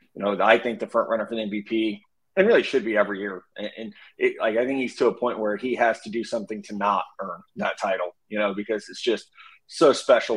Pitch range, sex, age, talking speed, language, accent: 105-135 Hz, male, 30-49, 250 wpm, English, American